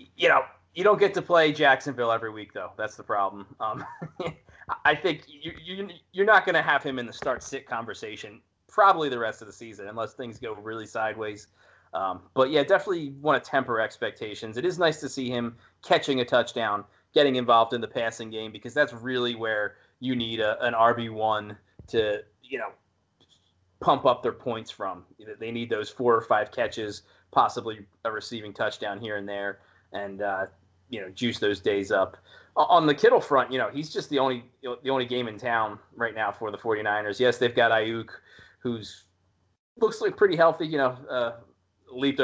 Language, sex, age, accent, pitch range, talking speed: English, male, 20-39, American, 105-135 Hz, 190 wpm